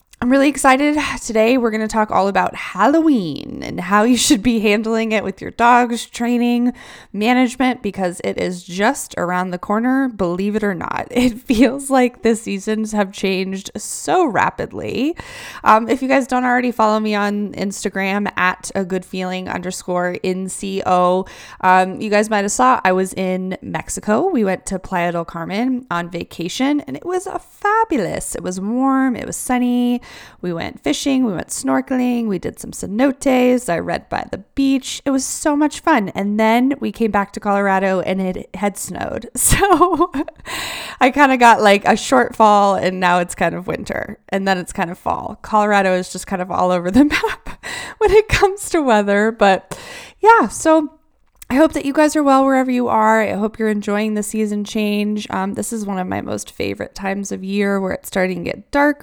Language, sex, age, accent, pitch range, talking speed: English, female, 20-39, American, 195-265 Hz, 195 wpm